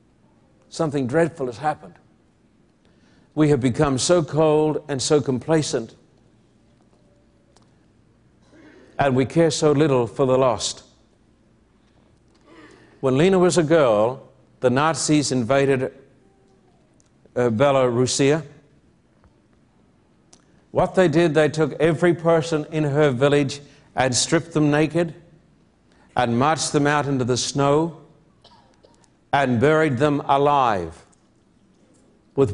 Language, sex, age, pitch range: English, male, 60-79, 130-155 Hz